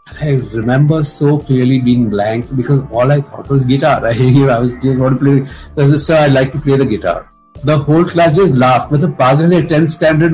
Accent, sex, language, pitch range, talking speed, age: native, male, Hindi, 125-160 Hz, 215 wpm, 50-69